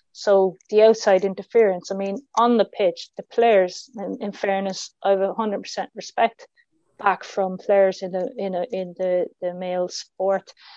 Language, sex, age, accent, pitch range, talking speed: English, female, 20-39, Irish, 185-205 Hz, 180 wpm